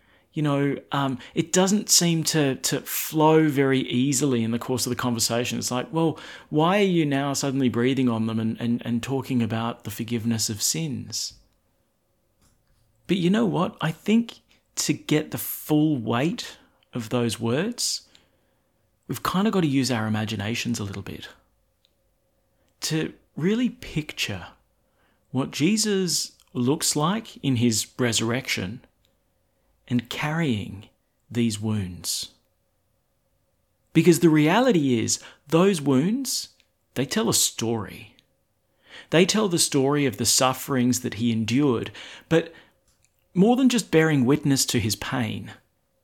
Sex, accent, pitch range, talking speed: male, Australian, 115-155 Hz, 135 wpm